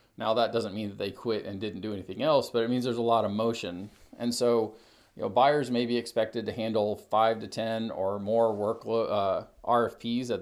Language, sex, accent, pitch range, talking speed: English, male, American, 100-115 Hz, 225 wpm